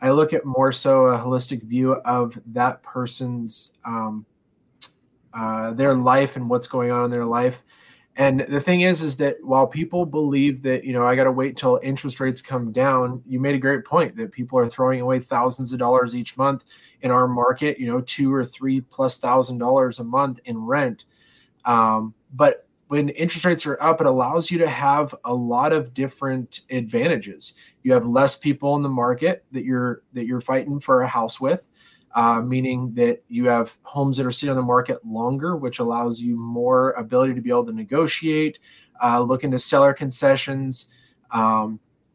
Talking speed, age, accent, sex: 190 wpm, 20-39, American, male